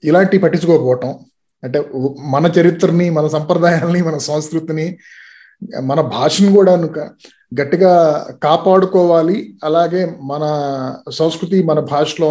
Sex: male